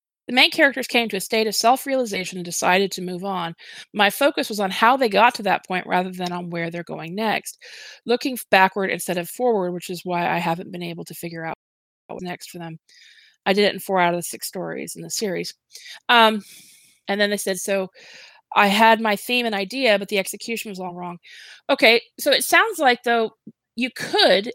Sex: female